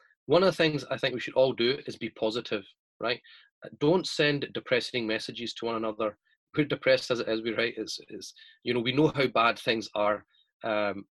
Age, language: 30-49, English